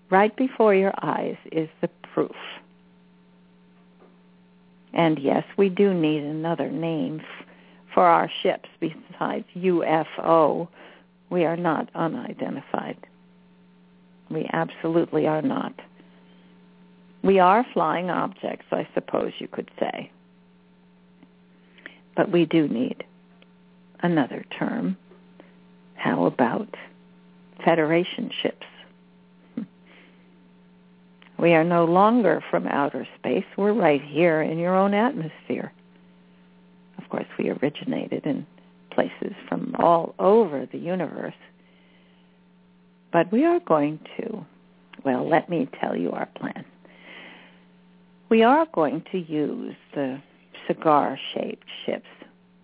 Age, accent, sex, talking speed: 50-69, American, female, 105 wpm